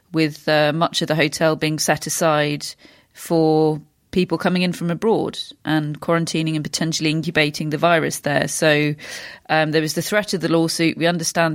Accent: British